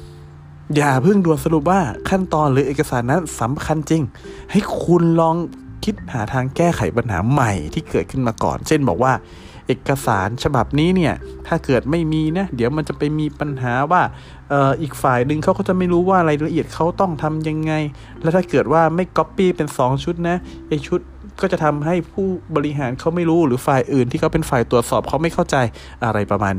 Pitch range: 115-165 Hz